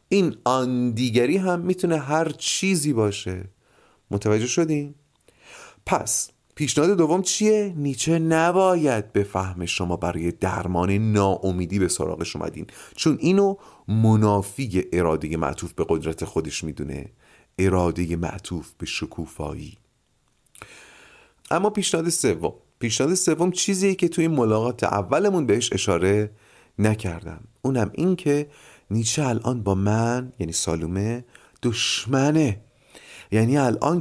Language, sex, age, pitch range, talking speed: Persian, male, 30-49, 95-145 Hz, 110 wpm